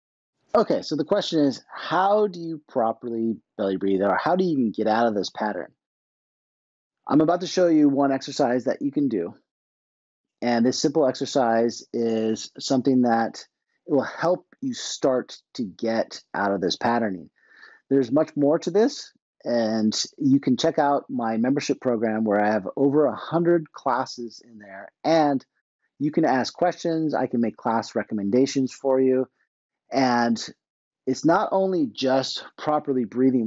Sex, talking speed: male, 160 wpm